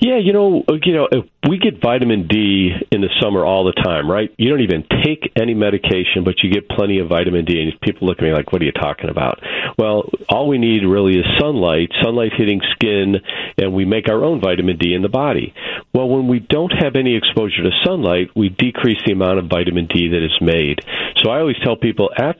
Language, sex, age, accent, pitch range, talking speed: English, male, 50-69, American, 90-125 Hz, 230 wpm